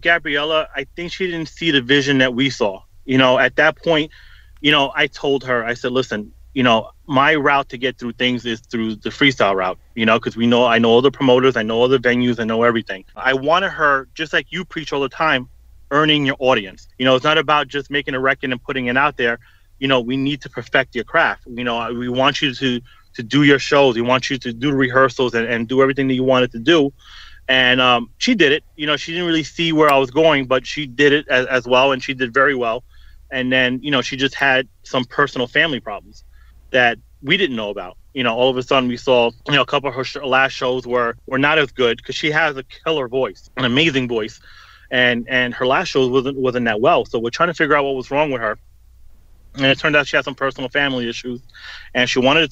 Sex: male